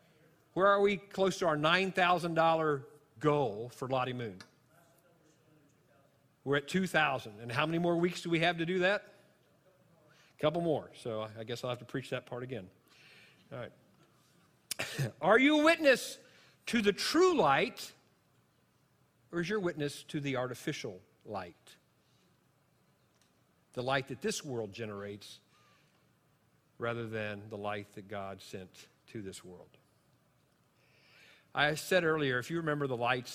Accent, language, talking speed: American, English, 145 wpm